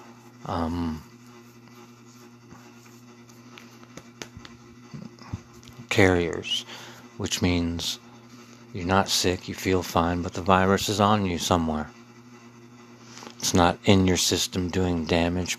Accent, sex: American, male